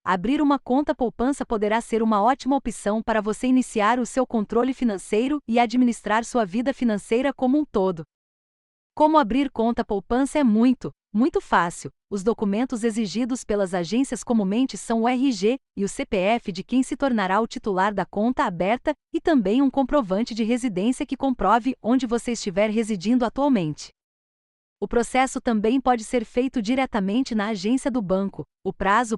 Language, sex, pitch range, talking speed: Portuguese, female, 210-265 Hz, 160 wpm